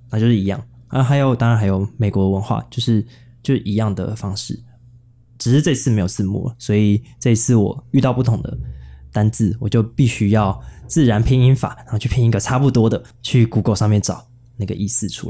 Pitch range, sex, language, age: 105-125 Hz, male, Chinese, 20-39